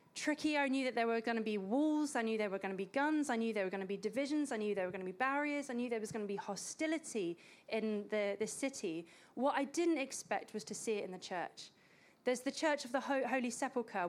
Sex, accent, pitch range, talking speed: female, British, 215-280 Hz, 275 wpm